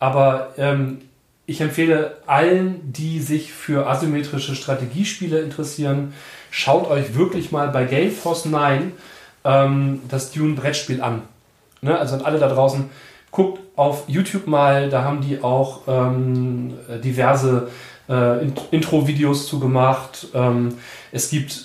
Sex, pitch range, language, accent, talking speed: male, 130-155 Hz, German, German, 120 wpm